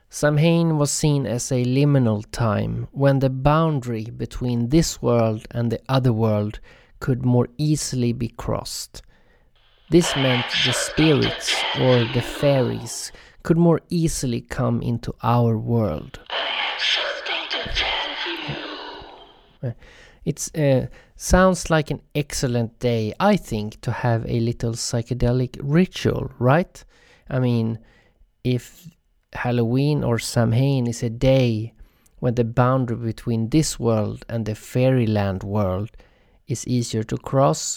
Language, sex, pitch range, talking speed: English, male, 115-160 Hz, 120 wpm